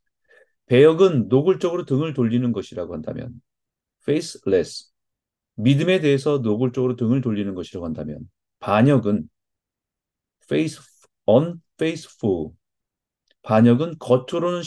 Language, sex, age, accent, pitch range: Korean, male, 40-59, native, 110-155 Hz